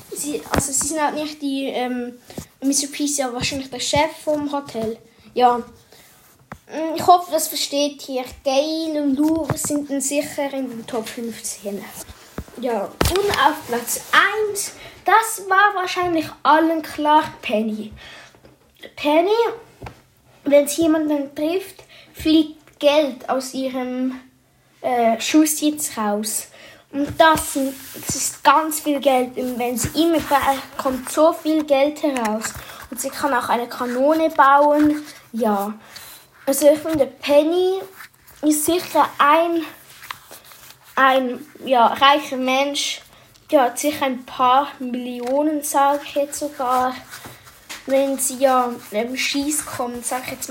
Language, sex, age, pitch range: German, female, 10-29, 255-310 Hz